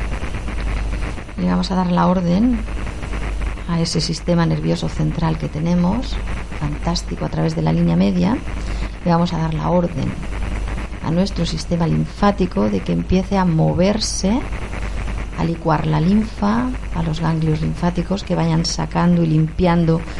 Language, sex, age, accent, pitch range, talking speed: Spanish, female, 40-59, Spanish, 155-185 Hz, 145 wpm